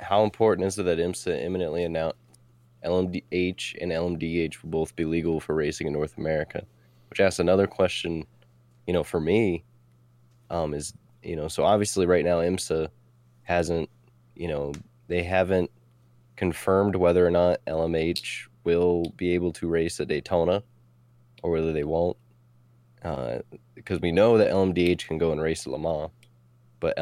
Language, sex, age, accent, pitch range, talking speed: English, male, 20-39, American, 80-95 Hz, 160 wpm